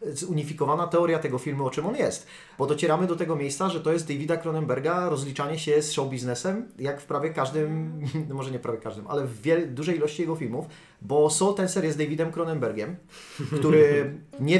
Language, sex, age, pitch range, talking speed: Polish, male, 30-49, 140-165 Hz, 190 wpm